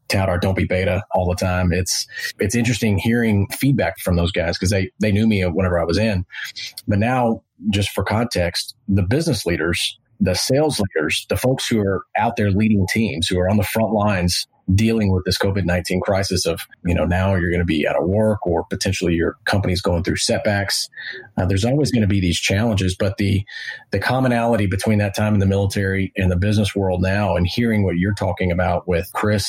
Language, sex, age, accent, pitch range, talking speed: English, male, 30-49, American, 95-105 Hz, 210 wpm